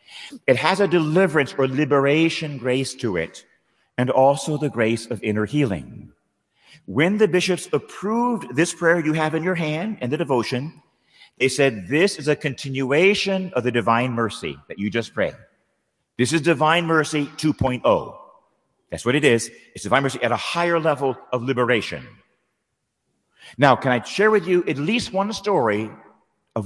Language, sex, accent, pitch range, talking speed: English, male, American, 115-165 Hz, 165 wpm